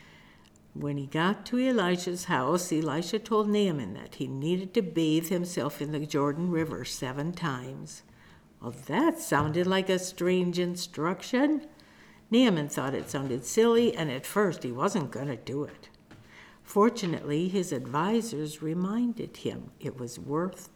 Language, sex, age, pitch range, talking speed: English, female, 60-79, 145-210 Hz, 145 wpm